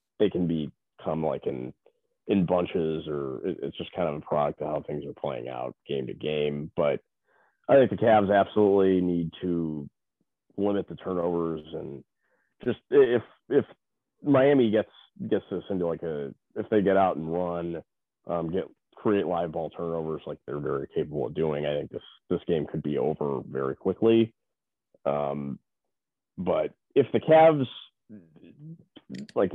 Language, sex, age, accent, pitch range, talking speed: English, male, 30-49, American, 80-110 Hz, 160 wpm